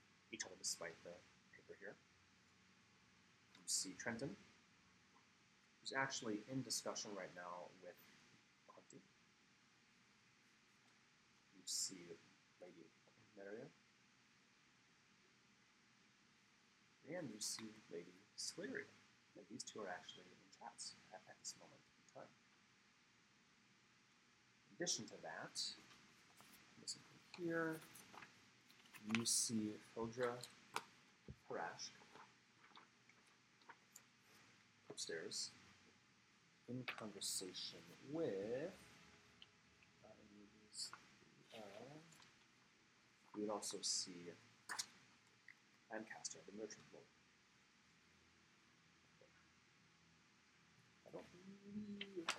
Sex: male